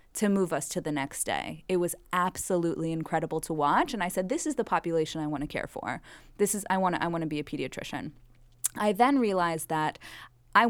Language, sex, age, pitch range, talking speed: English, female, 20-39, 165-210 Hz, 230 wpm